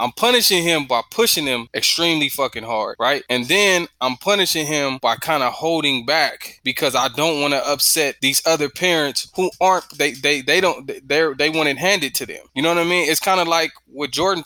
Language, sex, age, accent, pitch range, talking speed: English, male, 20-39, American, 115-160 Hz, 225 wpm